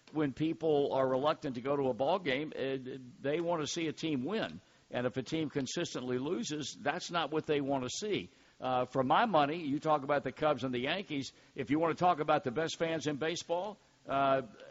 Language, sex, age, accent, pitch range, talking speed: English, male, 60-79, American, 120-145 Hz, 220 wpm